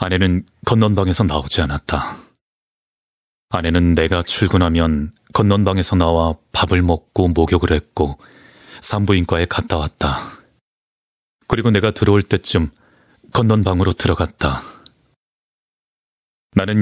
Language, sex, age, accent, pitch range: Korean, male, 30-49, native, 80-105 Hz